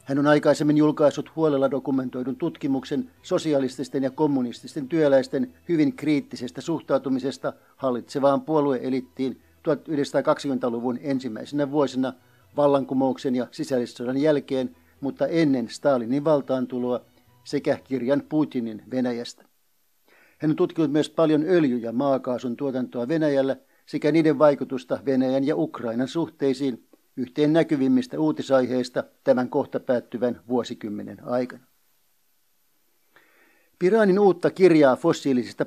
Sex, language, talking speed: male, Finnish, 100 wpm